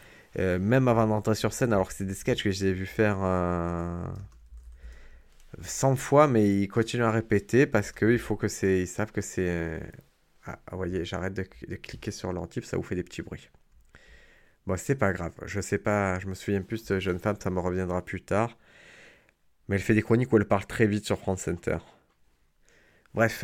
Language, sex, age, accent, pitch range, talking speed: French, male, 20-39, French, 95-115 Hz, 200 wpm